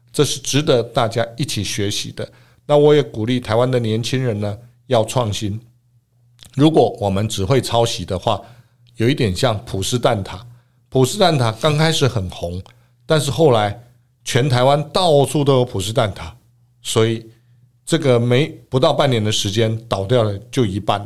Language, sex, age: Chinese, male, 50-69